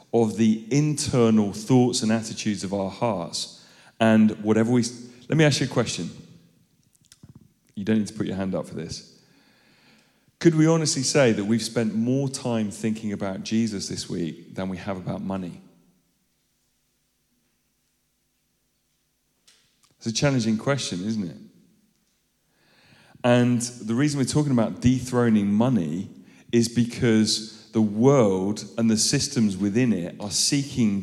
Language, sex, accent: English, male, British